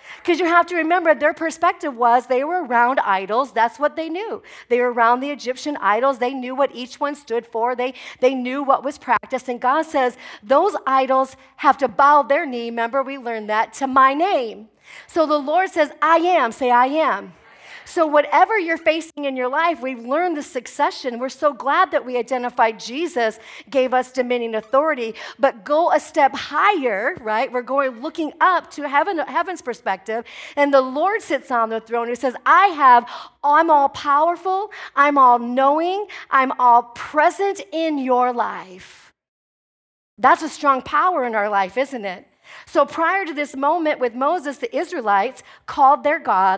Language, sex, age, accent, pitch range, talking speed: English, female, 40-59, American, 235-305 Hz, 180 wpm